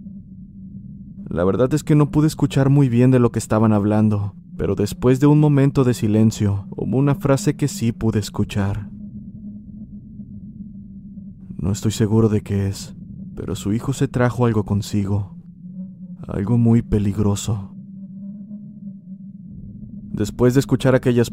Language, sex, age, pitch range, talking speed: Spanish, male, 30-49, 110-155 Hz, 135 wpm